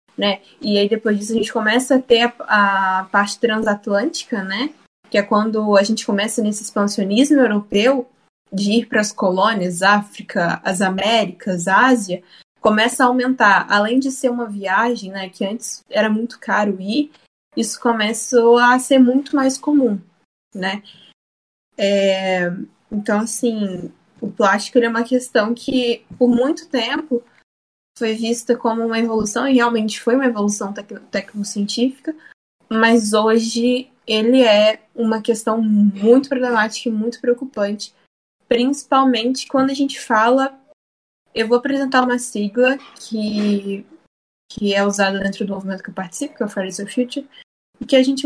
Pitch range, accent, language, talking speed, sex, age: 205-250 Hz, Brazilian, Portuguese, 150 wpm, female, 10-29